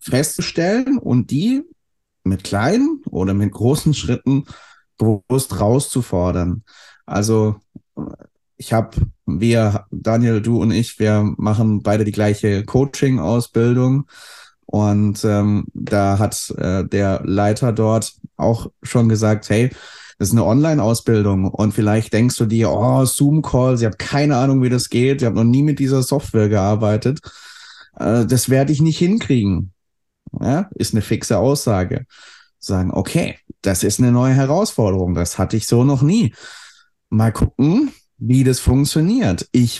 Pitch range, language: 100-130 Hz, German